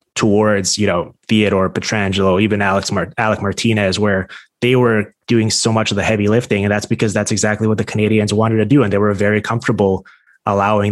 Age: 20-39